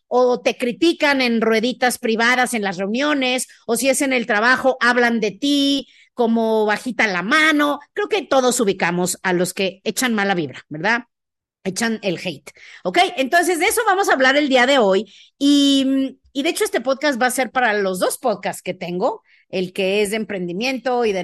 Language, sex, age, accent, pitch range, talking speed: Spanish, female, 40-59, Mexican, 210-275 Hz, 195 wpm